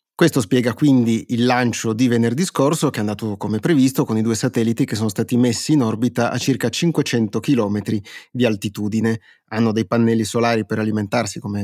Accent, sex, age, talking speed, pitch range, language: native, male, 30-49, 185 wpm, 110-130 Hz, Italian